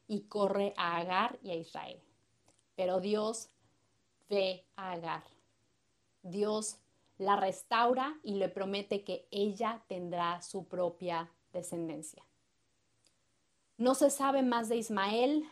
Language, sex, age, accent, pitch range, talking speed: Spanish, female, 30-49, Mexican, 185-225 Hz, 115 wpm